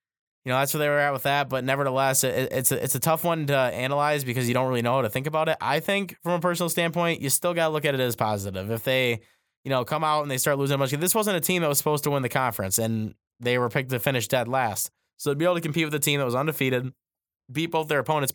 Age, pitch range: 20-39, 115-140 Hz